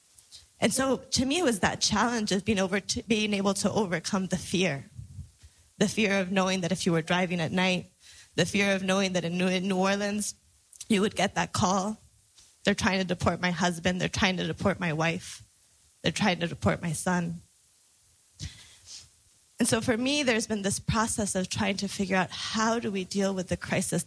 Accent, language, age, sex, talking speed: American, English, 20-39, female, 200 wpm